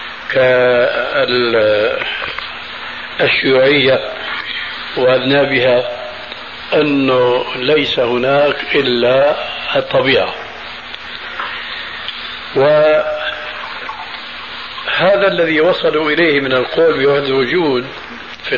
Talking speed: 55 wpm